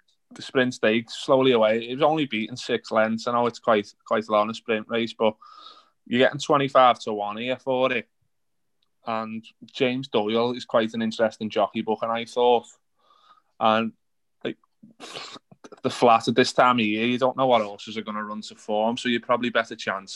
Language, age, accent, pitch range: English, 20-39, British, 110-125 Hz